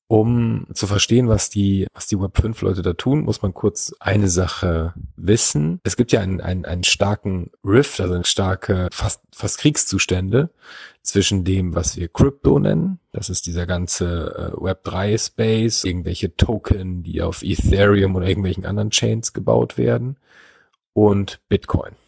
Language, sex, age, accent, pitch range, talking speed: German, male, 40-59, German, 90-105 Hz, 145 wpm